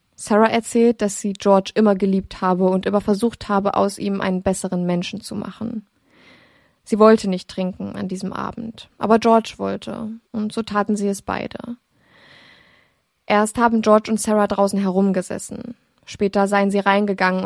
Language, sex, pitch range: German, female, 190-215 Hz